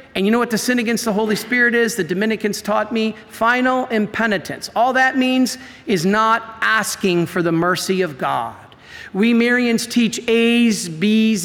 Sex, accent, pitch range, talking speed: male, American, 175-225 Hz, 175 wpm